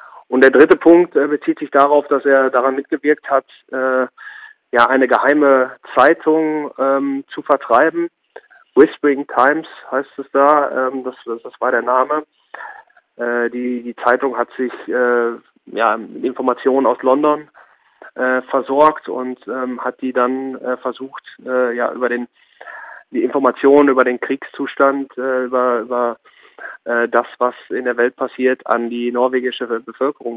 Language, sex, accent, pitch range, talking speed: German, male, German, 120-145 Hz, 145 wpm